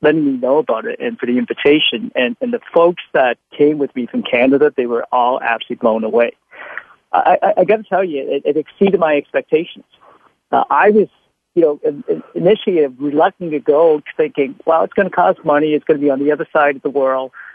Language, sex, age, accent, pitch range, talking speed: English, male, 50-69, American, 145-220 Hz, 220 wpm